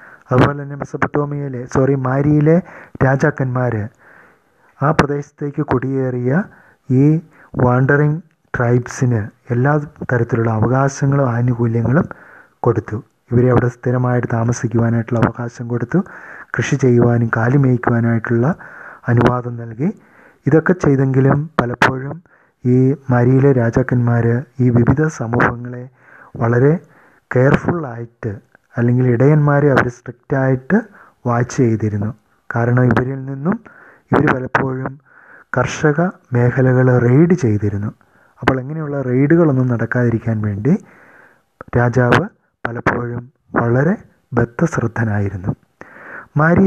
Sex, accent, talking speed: male, Indian, 65 wpm